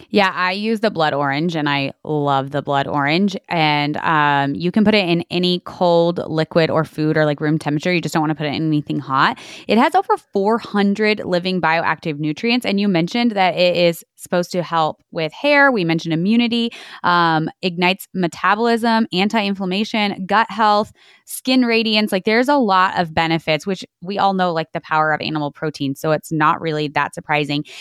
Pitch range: 160-215 Hz